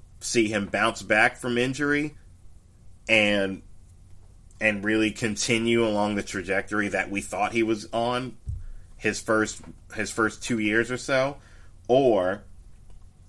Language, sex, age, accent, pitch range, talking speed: English, male, 30-49, American, 95-115 Hz, 125 wpm